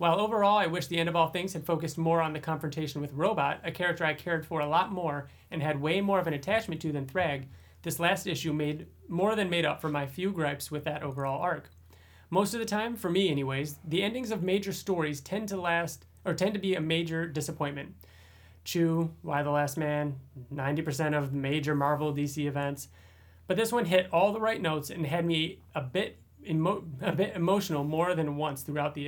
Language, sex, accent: English, male, American